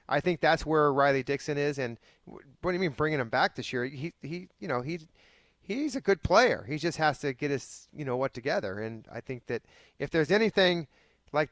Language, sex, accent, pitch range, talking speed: English, male, American, 125-160 Hz, 230 wpm